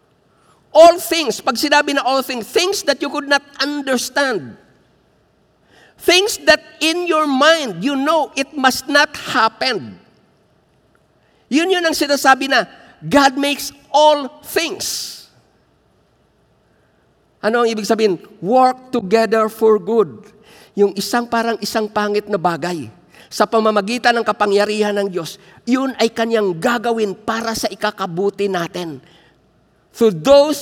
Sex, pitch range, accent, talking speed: male, 180-255 Hz, native, 125 wpm